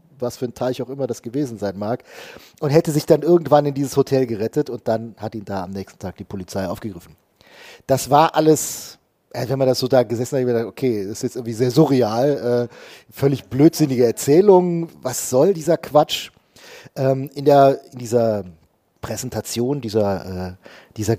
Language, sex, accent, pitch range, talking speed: German, male, German, 110-140 Hz, 185 wpm